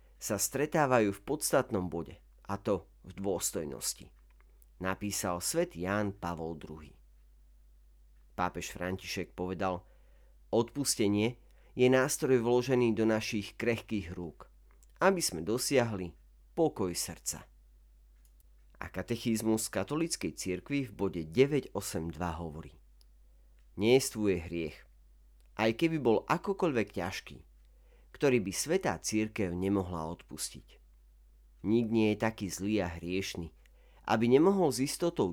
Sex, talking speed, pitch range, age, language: male, 105 wpm, 70-110 Hz, 40-59, Slovak